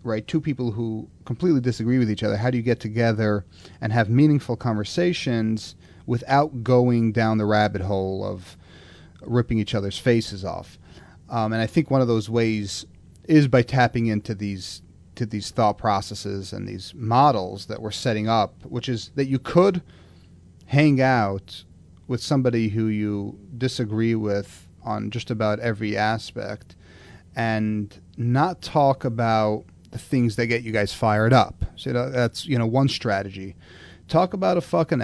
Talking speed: 165 wpm